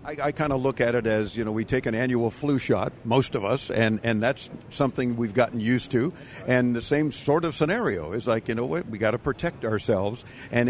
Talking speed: 260 wpm